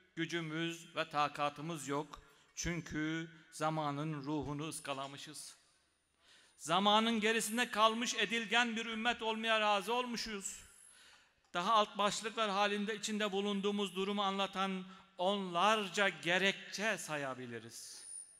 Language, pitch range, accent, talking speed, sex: Turkish, 175-225 Hz, native, 90 wpm, male